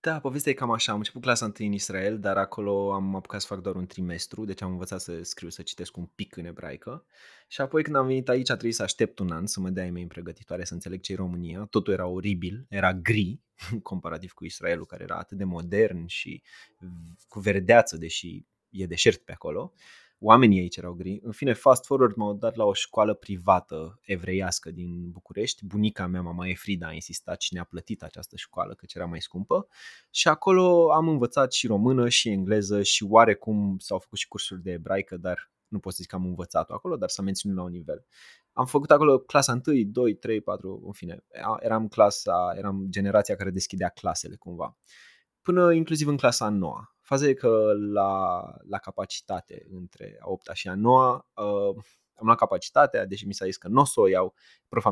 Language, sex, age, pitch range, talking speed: Romanian, male, 20-39, 90-115 Hz, 205 wpm